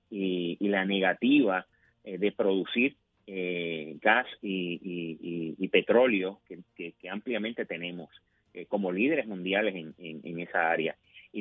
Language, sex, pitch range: Spanish, male, 90-110 Hz